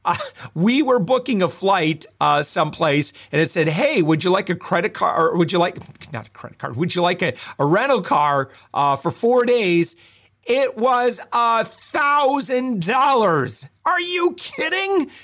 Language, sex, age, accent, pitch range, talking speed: English, male, 40-59, American, 145-195 Hz, 175 wpm